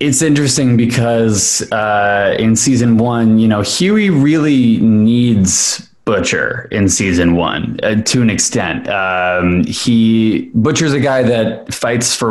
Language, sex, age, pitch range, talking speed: English, male, 20-39, 105-130 Hz, 135 wpm